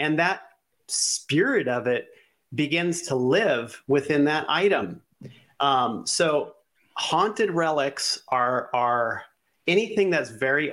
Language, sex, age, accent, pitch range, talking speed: English, male, 40-59, American, 125-150 Hz, 110 wpm